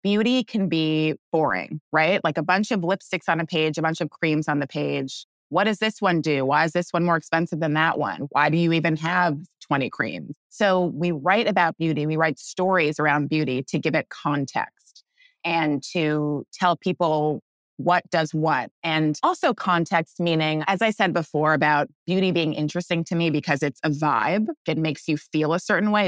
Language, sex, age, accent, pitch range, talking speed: English, female, 20-39, American, 150-185 Hz, 200 wpm